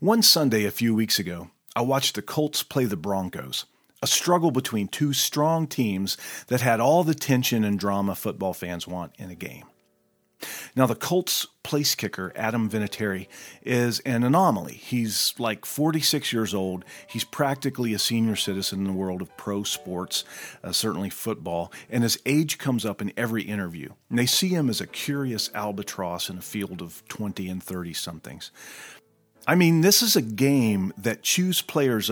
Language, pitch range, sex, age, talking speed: English, 95-135 Hz, male, 40-59, 170 wpm